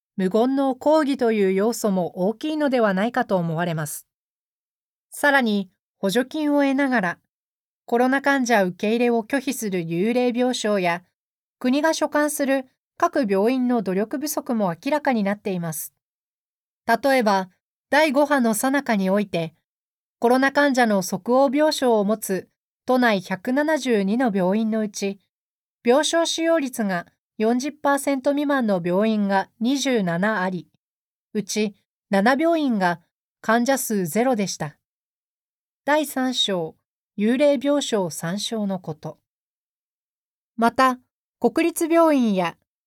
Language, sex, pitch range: Japanese, female, 200-275 Hz